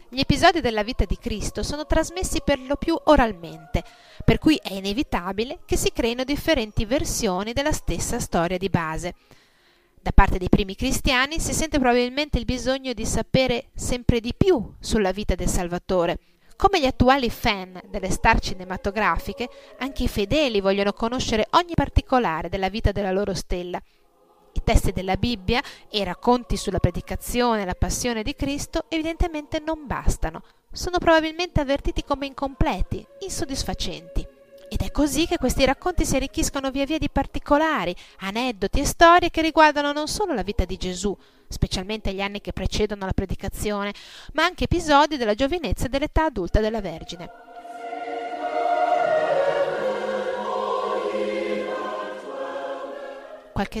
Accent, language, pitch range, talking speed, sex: native, Italian, 200-315 Hz, 140 wpm, female